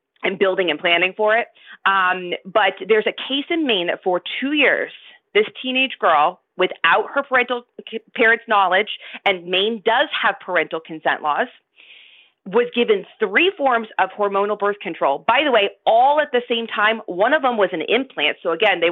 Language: English